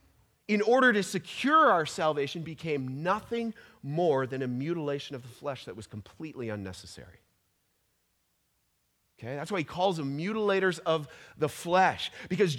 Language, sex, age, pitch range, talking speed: English, male, 30-49, 130-200 Hz, 145 wpm